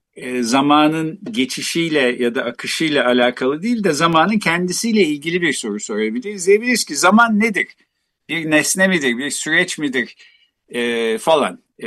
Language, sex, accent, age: Turkish, male, native, 50-69